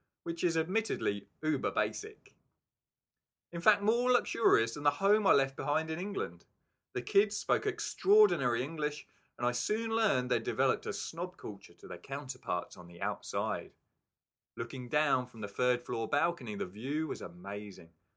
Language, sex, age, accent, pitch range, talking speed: English, male, 30-49, British, 95-145 Hz, 150 wpm